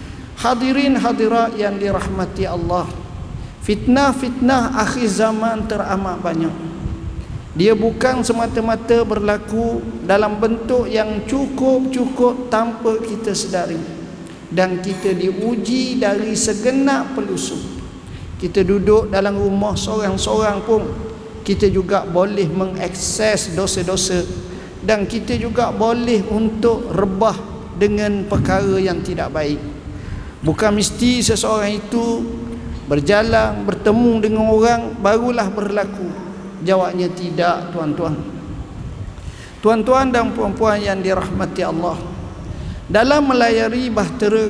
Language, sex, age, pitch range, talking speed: Malay, male, 50-69, 185-225 Hz, 95 wpm